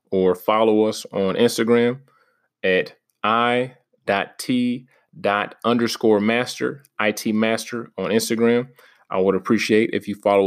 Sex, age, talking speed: male, 20-39, 110 wpm